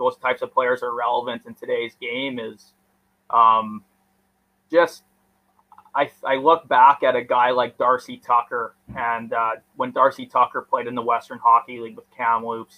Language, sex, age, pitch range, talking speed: English, male, 20-39, 120-135 Hz, 165 wpm